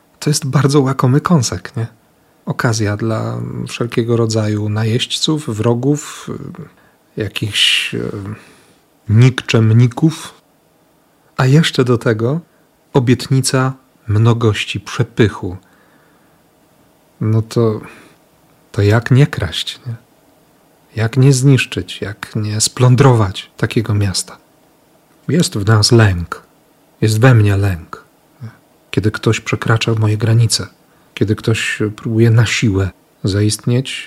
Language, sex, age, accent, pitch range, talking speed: Polish, male, 40-59, native, 110-150 Hz, 95 wpm